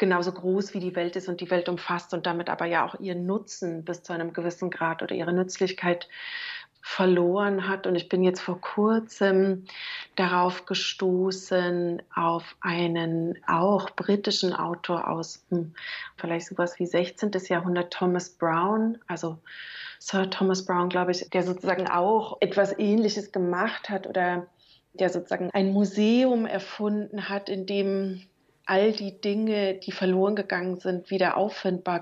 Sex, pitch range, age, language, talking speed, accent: female, 180-210 Hz, 30-49, German, 150 wpm, German